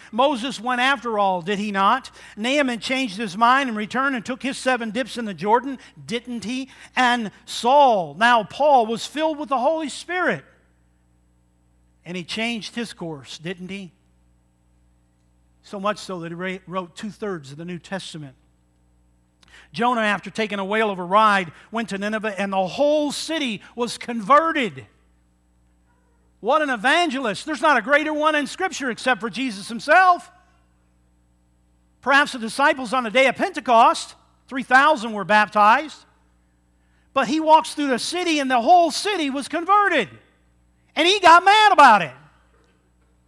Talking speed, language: 155 wpm, English